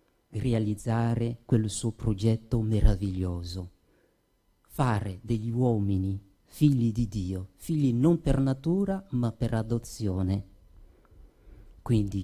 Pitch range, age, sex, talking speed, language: 105-135 Hz, 40-59, male, 95 wpm, Italian